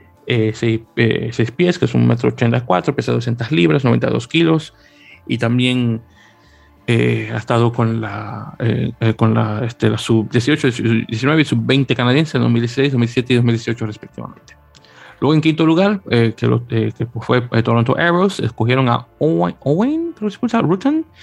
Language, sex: Spanish, male